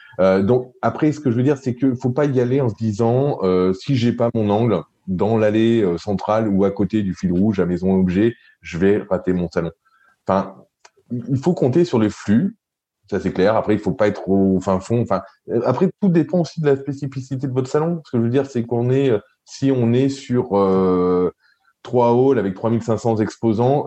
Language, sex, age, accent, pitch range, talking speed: French, male, 20-39, French, 95-130 Hz, 220 wpm